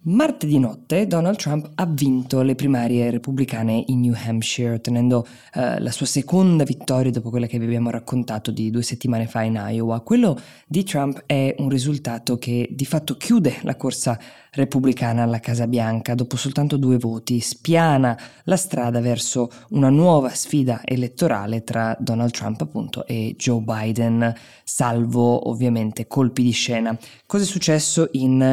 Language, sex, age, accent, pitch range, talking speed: Italian, female, 20-39, native, 120-150 Hz, 155 wpm